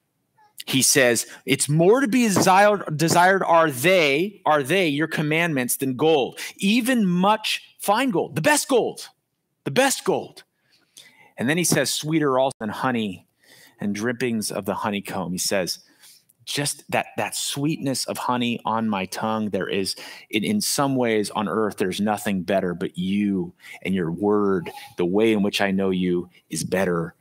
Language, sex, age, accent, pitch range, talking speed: English, male, 30-49, American, 105-150 Hz, 165 wpm